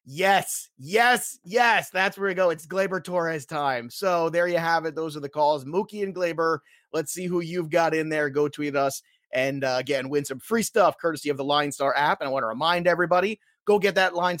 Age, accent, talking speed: 30-49, American, 235 wpm